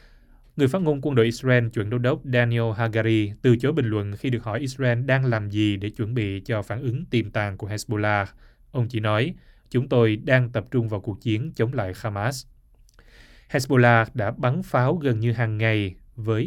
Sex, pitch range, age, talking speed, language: male, 110-130 Hz, 20-39, 200 wpm, Vietnamese